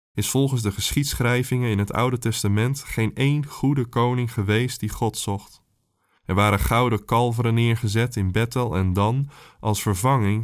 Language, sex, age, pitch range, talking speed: Dutch, male, 20-39, 105-125 Hz, 155 wpm